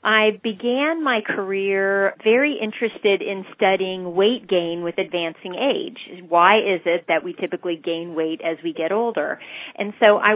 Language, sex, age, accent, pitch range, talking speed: English, female, 40-59, American, 170-215 Hz, 160 wpm